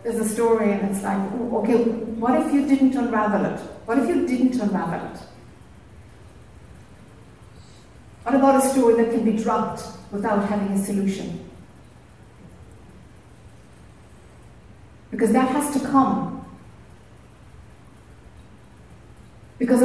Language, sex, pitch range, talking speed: English, female, 195-265 Hz, 115 wpm